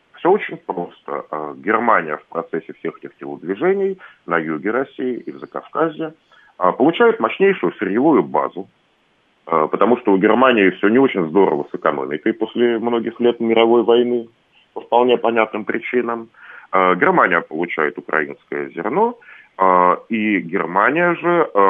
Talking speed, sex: 125 wpm, male